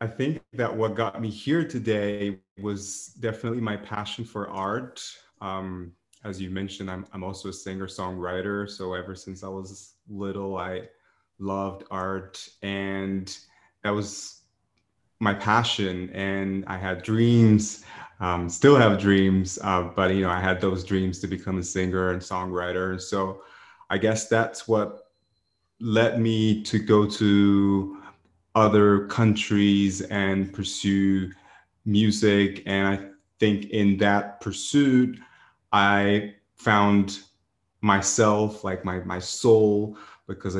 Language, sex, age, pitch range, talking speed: English, male, 30-49, 95-110 Hz, 130 wpm